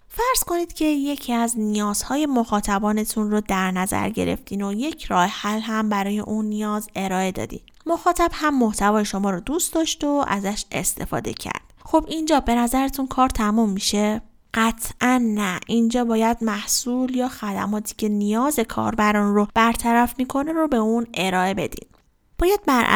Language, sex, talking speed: Persian, female, 155 wpm